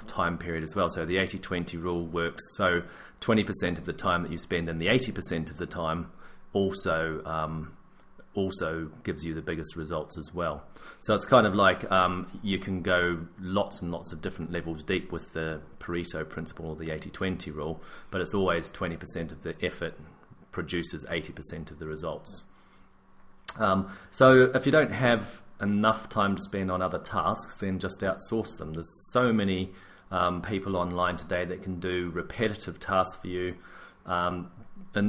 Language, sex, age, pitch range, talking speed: English, male, 30-49, 85-95 Hz, 175 wpm